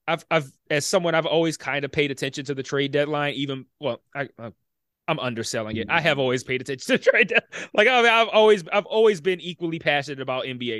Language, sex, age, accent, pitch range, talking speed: English, male, 20-39, American, 130-165 Hz, 230 wpm